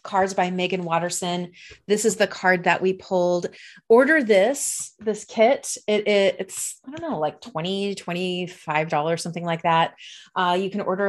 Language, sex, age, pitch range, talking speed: English, female, 30-49, 175-220 Hz, 170 wpm